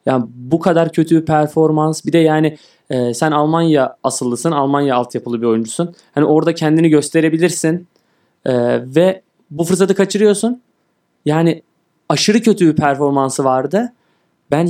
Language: Turkish